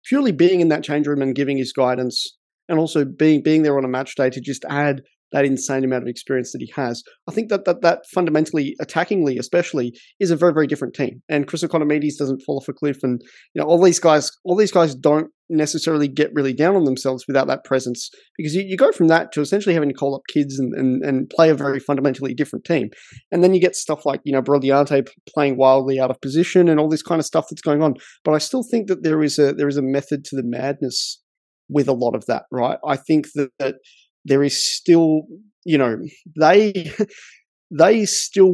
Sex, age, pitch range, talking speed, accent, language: male, 20-39, 135-160 Hz, 230 wpm, Australian, English